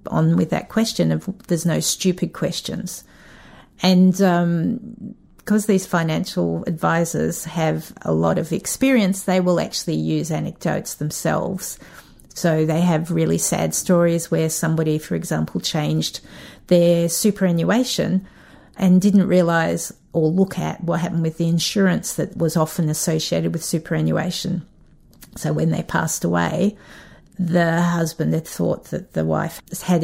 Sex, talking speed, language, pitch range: female, 140 wpm, English, 155-185 Hz